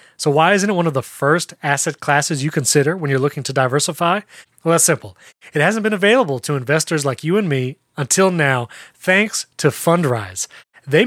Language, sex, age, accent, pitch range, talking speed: English, male, 30-49, American, 135-195 Hz, 195 wpm